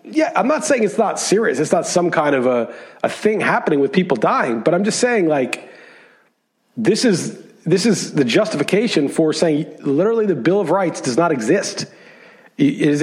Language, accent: English, American